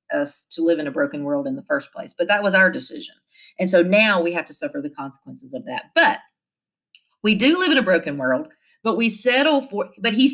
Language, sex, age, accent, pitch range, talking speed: English, female, 40-59, American, 185-280 Hz, 240 wpm